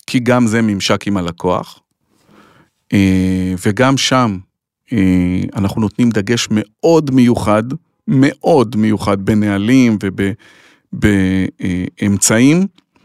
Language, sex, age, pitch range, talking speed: Hebrew, male, 40-59, 110-140 Hz, 80 wpm